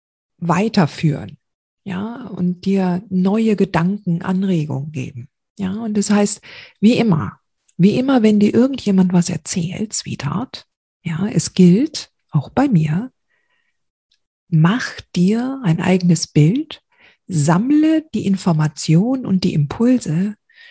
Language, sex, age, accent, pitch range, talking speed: German, female, 50-69, German, 155-205 Hz, 115 wpm